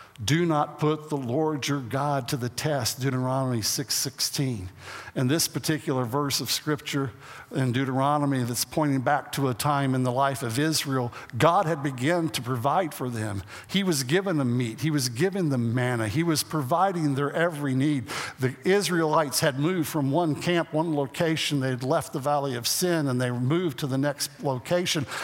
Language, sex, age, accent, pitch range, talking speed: English, male, 60-79, American, 140-215 Hz, 185 wpm